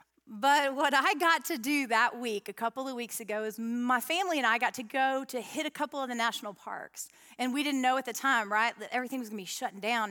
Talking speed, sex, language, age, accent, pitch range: 265 wpm, female, English, 30-49, American, 220-280 Hz